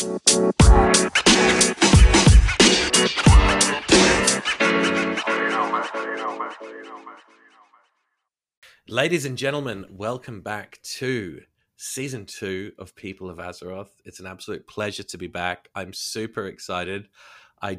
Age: 30-49